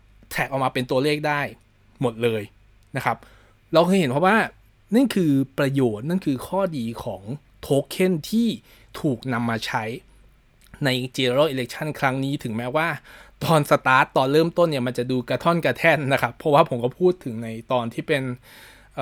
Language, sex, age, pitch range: Thai, male, 20-39, 115-160 Hz